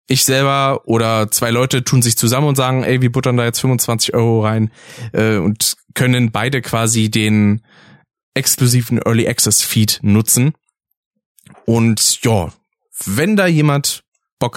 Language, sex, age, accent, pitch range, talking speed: German, male, 20-39, German, 110-130 Hz, 135 wpm